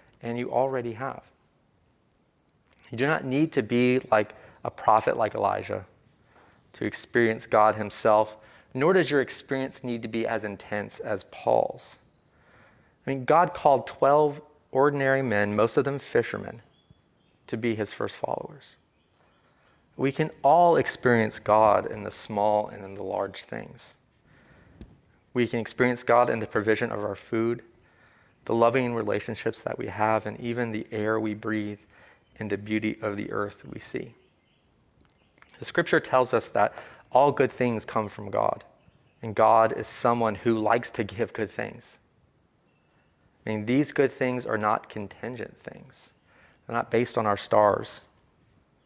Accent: American